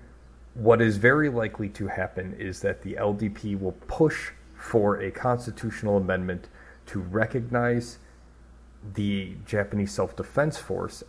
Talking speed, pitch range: 120 wpm, 95-110 Hz